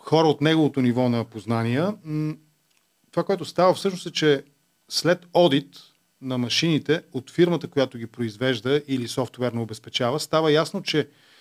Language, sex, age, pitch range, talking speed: Bulgarian, male, 40-59, 125-155 Hz, 140 wpm